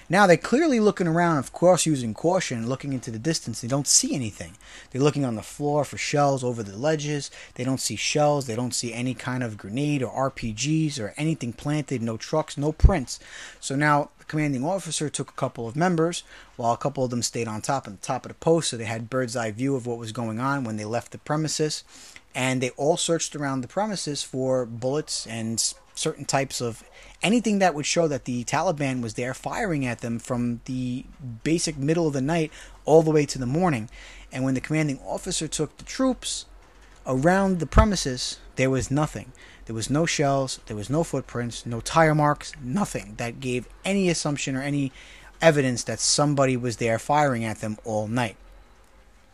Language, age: English, 30-49